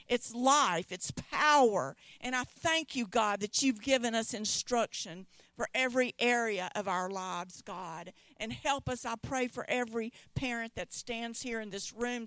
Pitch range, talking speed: 225-275 Hz, 170 wpm